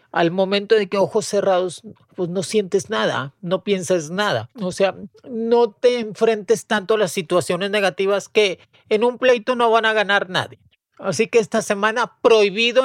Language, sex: Spanish, male